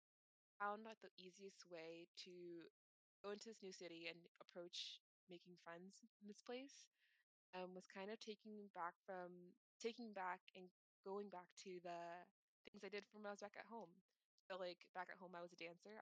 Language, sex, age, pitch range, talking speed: English, female, 20-39, 175-205 Hz, 190 wpm